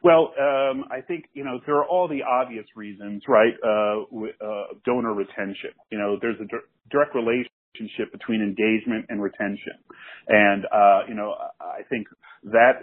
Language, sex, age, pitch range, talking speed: English, male, 40-59, 105-125 Hz, 165 wpm